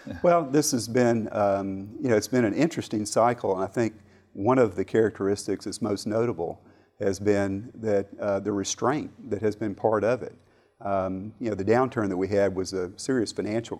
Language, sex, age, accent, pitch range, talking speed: English, male, 40-59, American, 95-110 Hz, 200 wpm